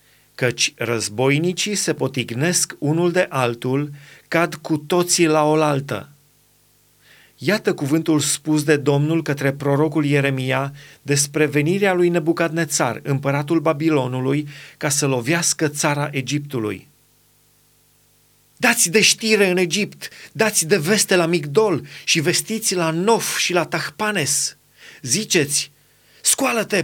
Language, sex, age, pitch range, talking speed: Romanian, male, 30-49, 145-215 Hz, 110 wpm